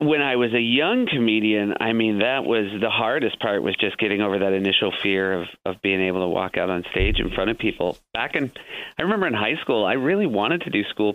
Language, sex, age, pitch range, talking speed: English, male, 30-49, 95-115 Hz, 250 wpm